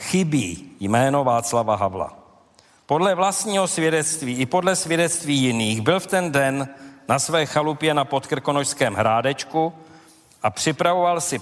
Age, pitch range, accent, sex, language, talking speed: 50-69, 135-165 Hz, native, male, Czech, 125 wpm